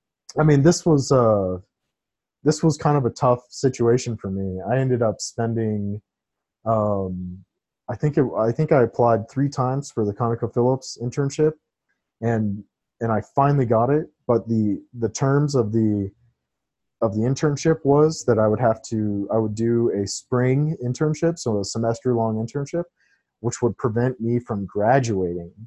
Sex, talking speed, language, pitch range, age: male, 165 wpm, English, 105-125 Hz, 30-49